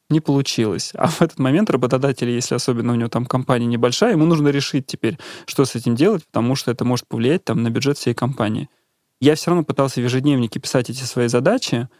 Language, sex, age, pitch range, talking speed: Russian, male, 20-39, 120-140 Hz, 210 wpm